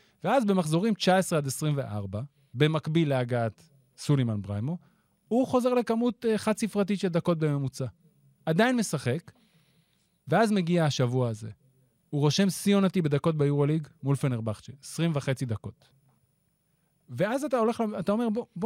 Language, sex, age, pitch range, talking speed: Hebrew, male, 30-49, 130-175 Hz, 130 wpm